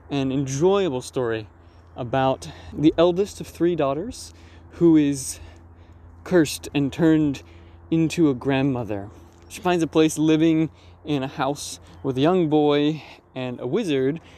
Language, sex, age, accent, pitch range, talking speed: English, male, 20-39, American, 105-145 Hz, 135 wpm